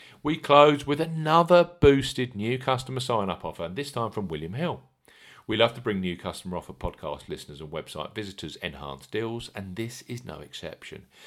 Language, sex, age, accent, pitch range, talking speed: English, male, 50-69, British, 90-130 Hz, 185 wpm